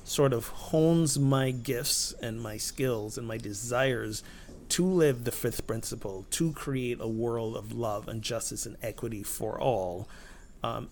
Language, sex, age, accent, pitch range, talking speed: English, male, 30-49, American, 110-135 Hz, 160 wpm